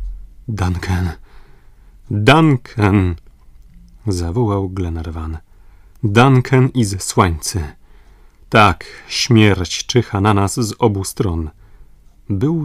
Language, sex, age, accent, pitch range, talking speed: Polish, male, 30-49, native, 95-130 Hz, 70 wpm